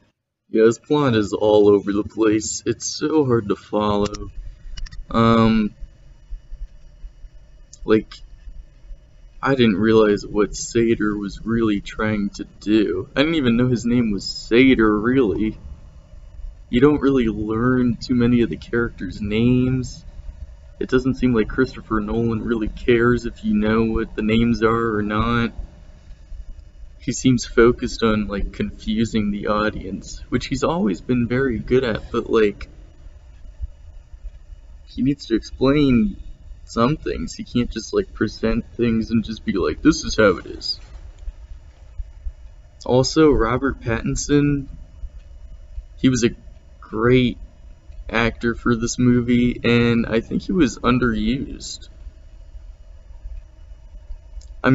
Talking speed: 130 wpm